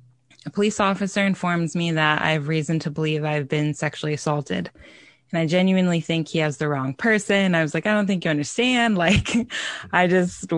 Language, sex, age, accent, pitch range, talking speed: English, female, 20-39, American, 155-180 Hz, 200 wpm